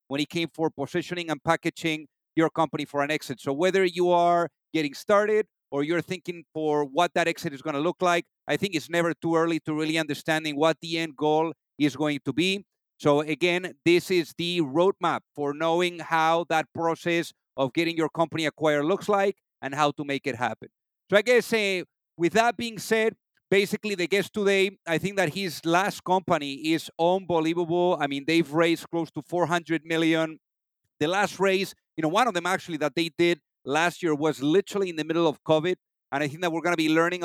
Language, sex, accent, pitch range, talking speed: English, male, Spanish, 155-185 Hz, 210 wpm